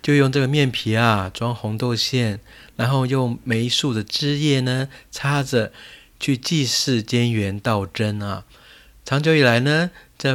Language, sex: Chinese, male